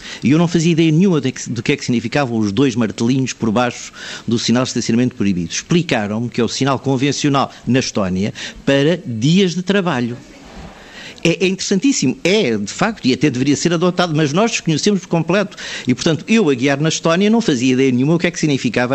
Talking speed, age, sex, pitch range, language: 205 wpm, 50-69, male, 115-155 Hz, Portuguese